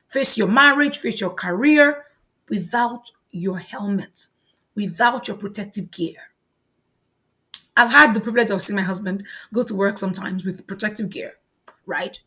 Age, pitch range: 30-49, 195-265 Hz